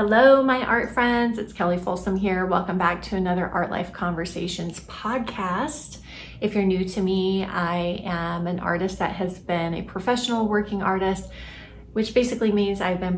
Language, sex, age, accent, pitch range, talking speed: English, female, 30-49, American, 180-210 Hz, 170 wpm